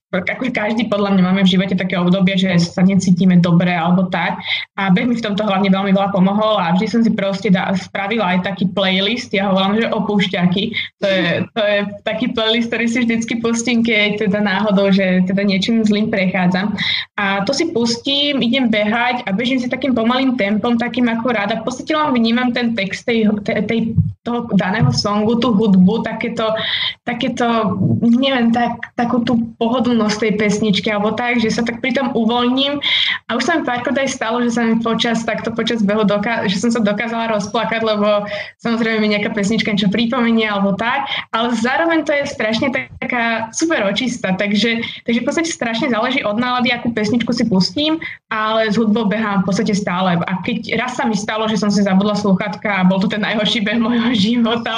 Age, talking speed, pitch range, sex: 20-39, 190 wpm, 200-235 Hz, female